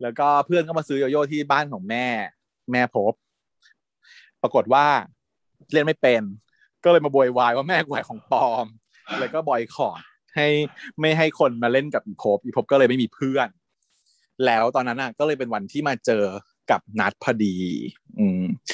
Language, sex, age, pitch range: Thai, male, 20-39, 115-170 Hz